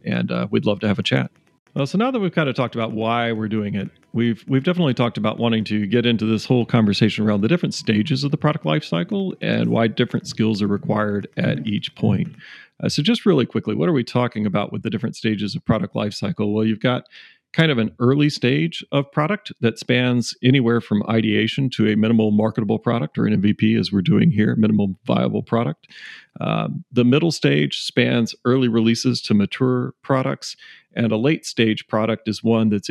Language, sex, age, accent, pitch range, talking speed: English, male, 40-59, American, 110-130 Hz, 210 wpm